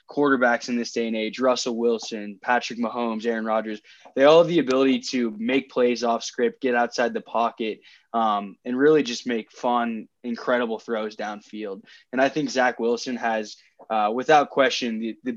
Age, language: 10-29, English